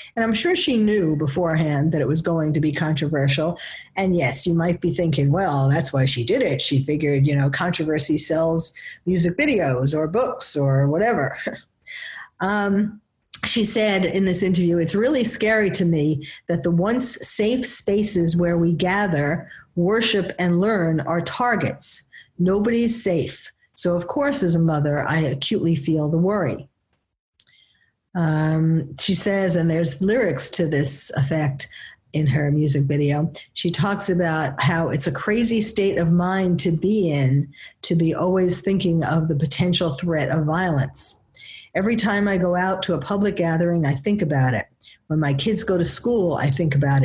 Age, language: 50-69, English